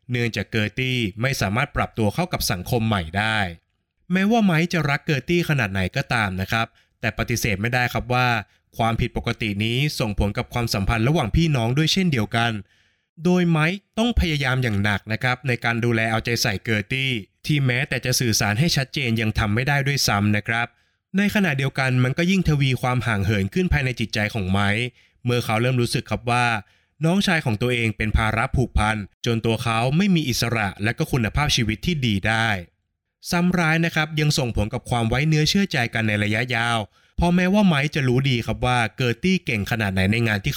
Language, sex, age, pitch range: Thai, male, 20-39, 110-145 Hz